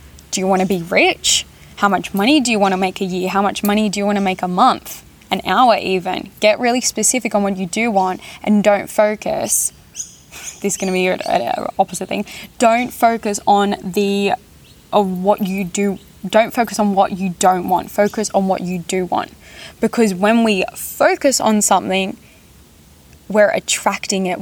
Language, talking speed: English, 190 wpm